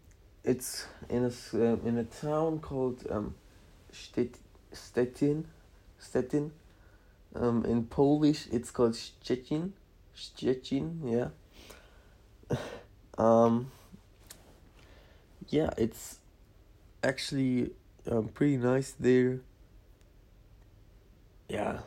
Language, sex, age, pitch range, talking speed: English, male, 20-39, 100-130 Hz, 75 wpm